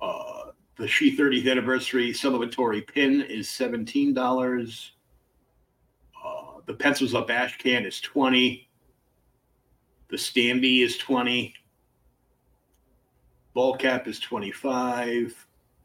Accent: American